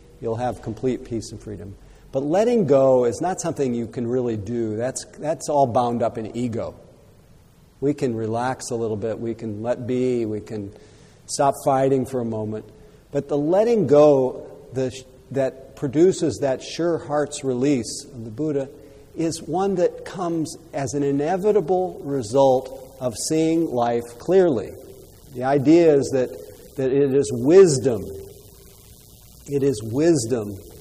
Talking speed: 150 wpm